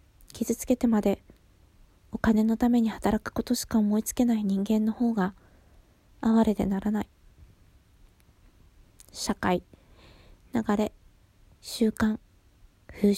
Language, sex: Japanese, female